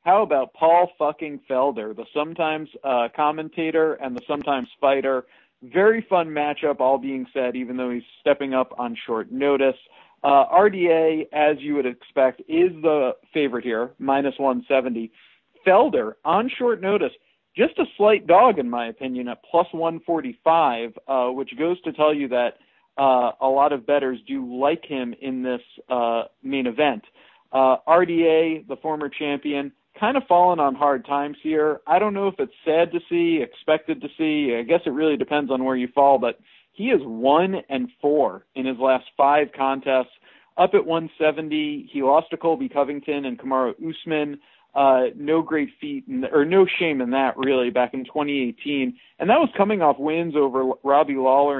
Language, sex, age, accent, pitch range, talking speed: English, male, 40-59, American, 130-165 Hz, 175 wpm